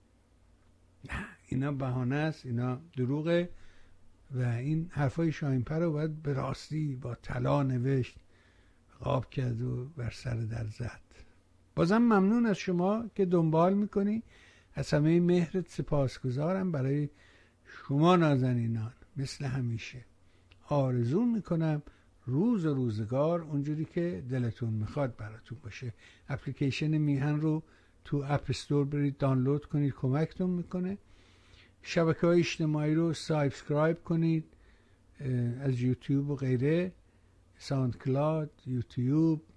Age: 60-79